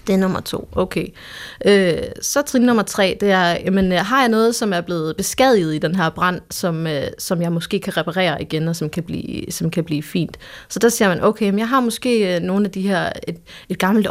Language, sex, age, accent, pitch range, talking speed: Danish, female, 30-49, native, 175-210 Hz, 240 wpm